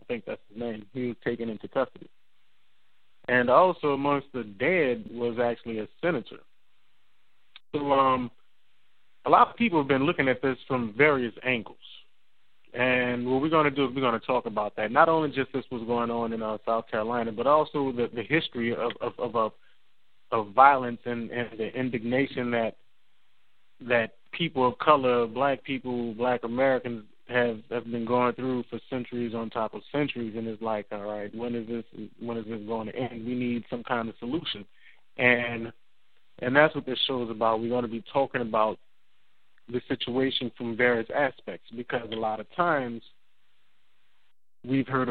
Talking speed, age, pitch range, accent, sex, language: 180 wpm, 20-39, 115-130 Hz, American, male, English